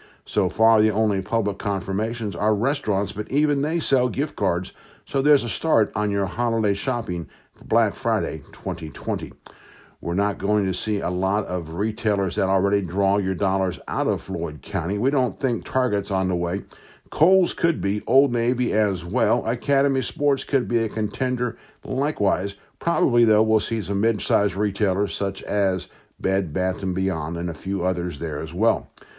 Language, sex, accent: English, male, American